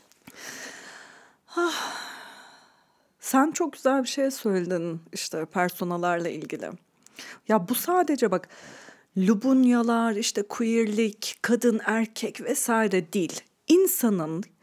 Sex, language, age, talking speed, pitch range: female, Turkish, 40-59, 85 wpm, 180-245 Hz